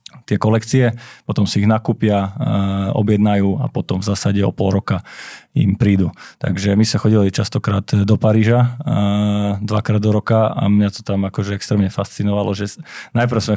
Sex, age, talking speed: male, 20-39, 170 wpm